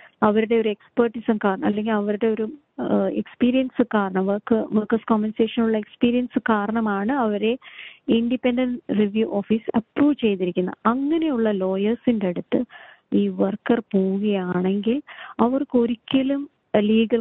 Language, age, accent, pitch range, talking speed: Malayalam, 30-49, native, 200-245 Hz, 90 wpm